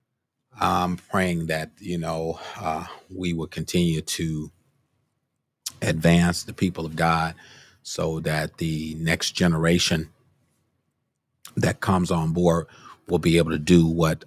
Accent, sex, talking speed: American, male, 125 wpm